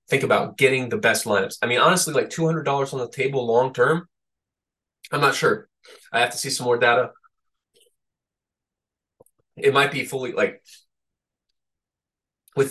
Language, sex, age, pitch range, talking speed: English, male, 20-39, 105-150 Hz, 145 wpm